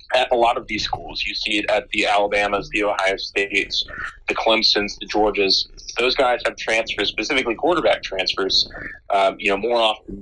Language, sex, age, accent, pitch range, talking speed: English, male, 30-49, American, 100-120 Hz, 180 wpm